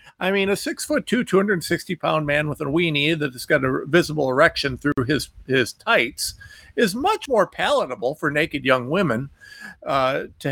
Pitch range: 145-220 Hz